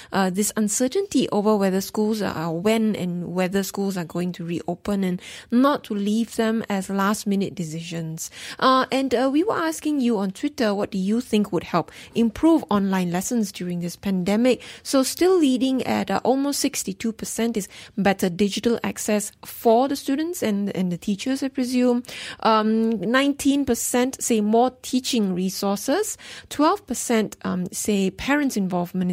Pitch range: 195-245 Hz